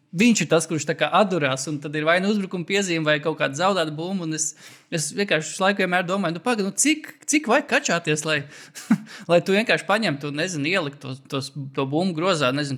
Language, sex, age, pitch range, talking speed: English, male, 20-39, 140-180 Hz, 195 wpm